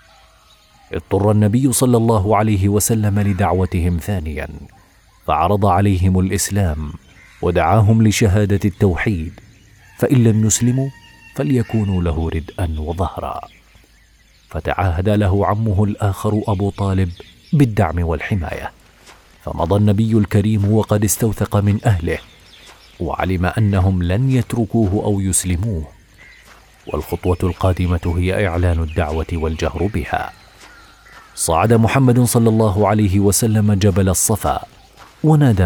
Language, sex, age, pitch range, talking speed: Arabic, male, 40-59, 90-110 Hz, 100 wpm